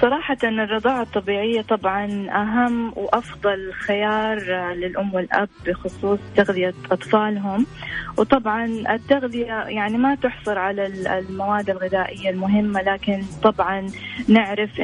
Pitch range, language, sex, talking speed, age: 190-225 Hz, Arabic, female, 95 wpm, 20-39